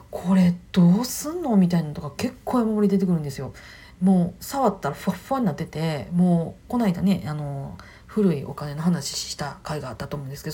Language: Japanese